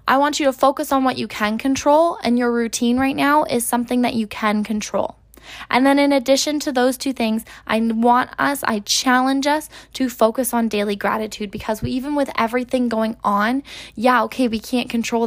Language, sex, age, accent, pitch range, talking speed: English, female, 10-29, American, 215-260 Hz, 205 wpm